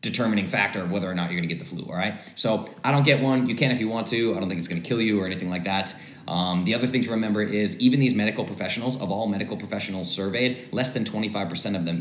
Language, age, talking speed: English, 30-49, 290 wpm